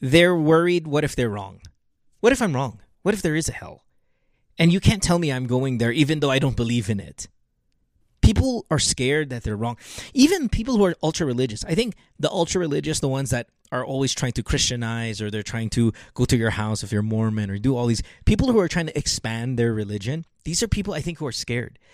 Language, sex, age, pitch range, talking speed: English, male, 20-39, 115-160 Hz, 240 wpm